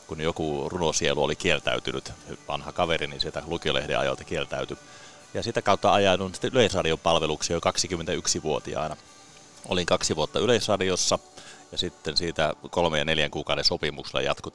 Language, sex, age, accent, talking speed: Finnish, male, 30-49, native, 130 wpm